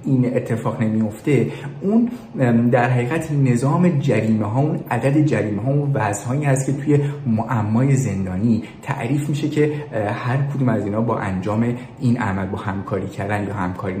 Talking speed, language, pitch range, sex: 160 wpm, Persian, 115-155 Hz, male